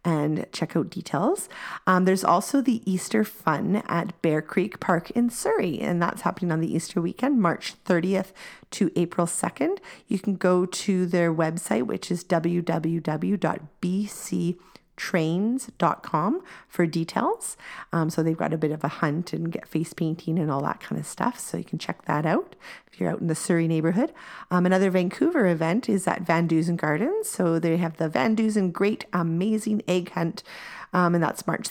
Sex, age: female, 40-59